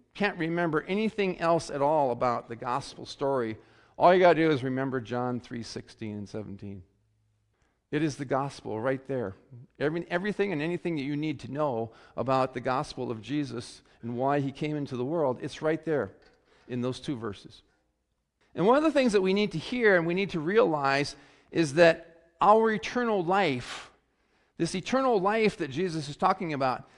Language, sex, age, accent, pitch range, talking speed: English, male, 50-69, American, 130-185 Hz, 185 wpm